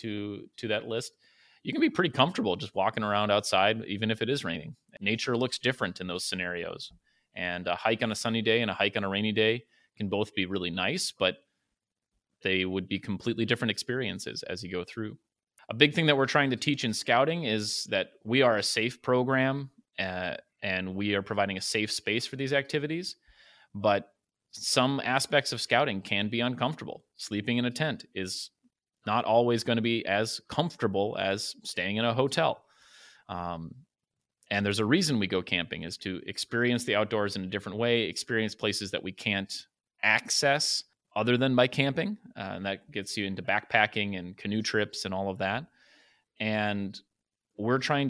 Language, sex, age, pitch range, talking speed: English, male, 30-49, 100-125 Hz, 190 wpm